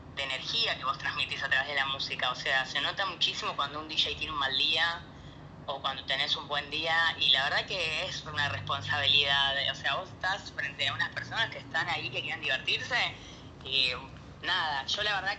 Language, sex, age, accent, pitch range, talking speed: Spanish, female, 20-39, Argentinian, 145-170 Hz, 205 wpm